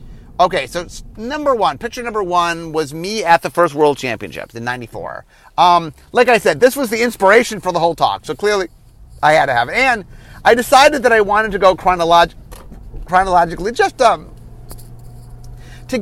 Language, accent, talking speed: English, American, 180 wpm